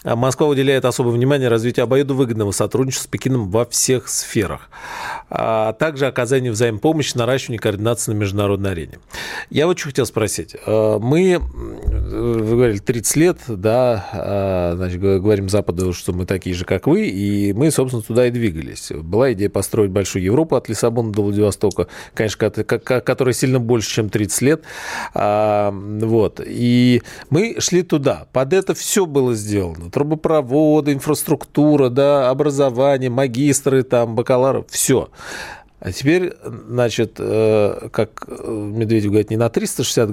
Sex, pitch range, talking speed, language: male, 105-140 Hz, 135 wpm, Russian